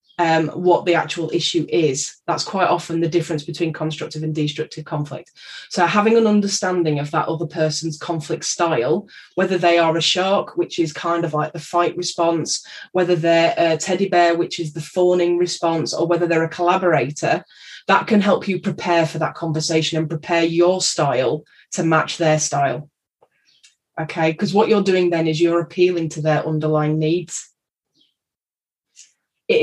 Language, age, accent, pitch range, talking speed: English, 10-29, British, 160-175 Hz, 170 wpm